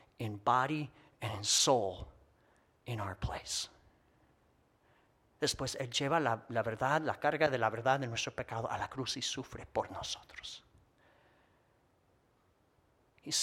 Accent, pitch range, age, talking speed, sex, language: American, 115-165 Hz, 50-69, 135 wpm, male, English